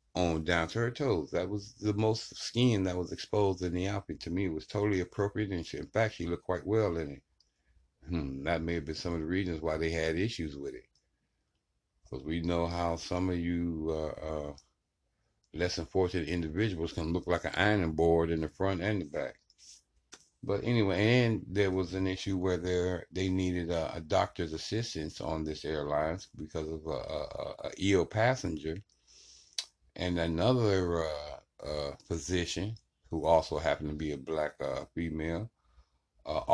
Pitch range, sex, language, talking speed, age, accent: 80-95 Hz, male, English, 180 wpm, 60-79, American